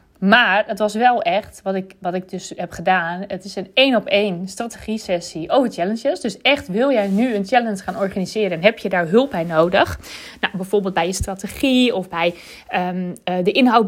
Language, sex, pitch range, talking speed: Dutch, female, 185-240 Hz, 195 wpm